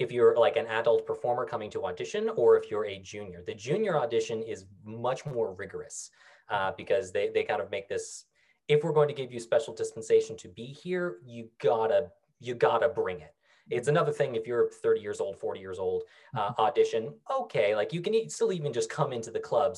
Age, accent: 20-39, American